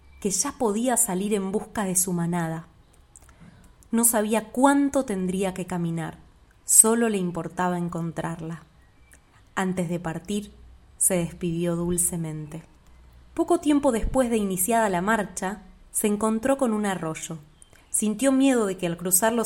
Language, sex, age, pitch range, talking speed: Spanish, female, 20-39, 175-230 Hz, 135 wpm